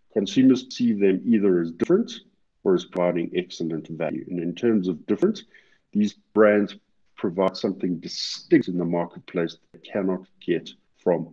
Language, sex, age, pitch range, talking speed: English, male, 50-69, 85-100 Hz, 155 wpm